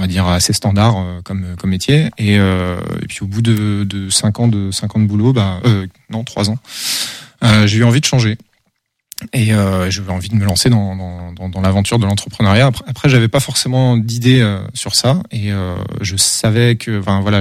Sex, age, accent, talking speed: male, 20-39, French, 220 wpm